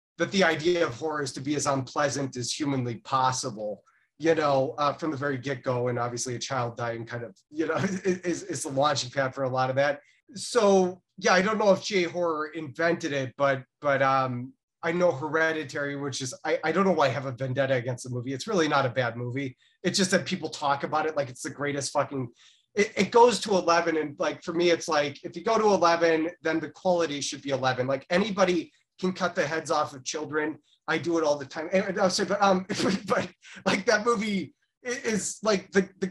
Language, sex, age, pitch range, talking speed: English, male, 30-49, 140-180 Hz, 230 wpm